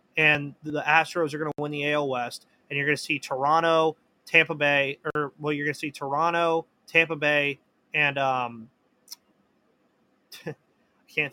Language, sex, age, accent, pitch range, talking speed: English, male, 20-39, American, 140-170 Hz, 170 wpm